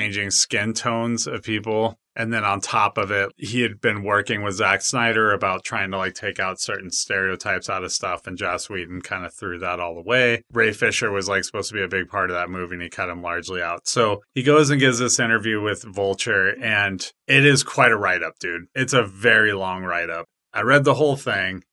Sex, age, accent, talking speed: male, 30-49, American, 230 wpm